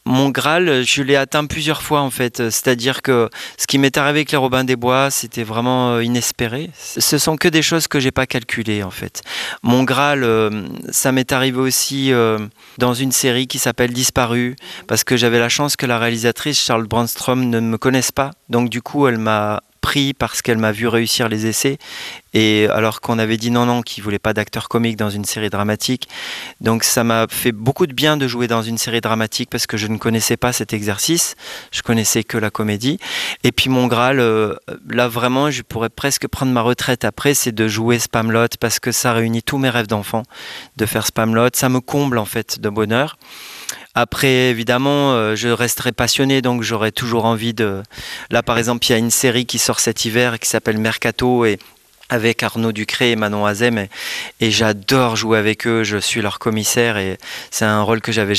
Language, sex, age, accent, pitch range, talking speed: French, male, 30-49, French, 110-130 Hz, 205 wpm